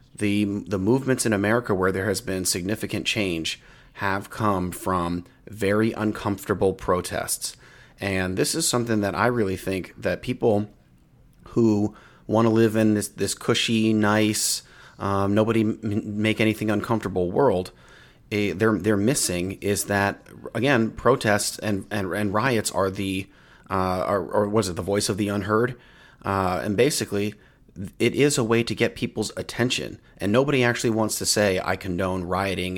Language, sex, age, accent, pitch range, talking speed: English, male, 30-49, American, 100-115 Hz, 150 wpm